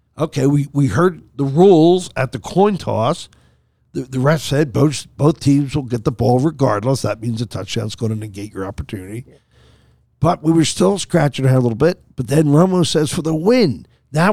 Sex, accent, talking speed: male, American, 210 wpm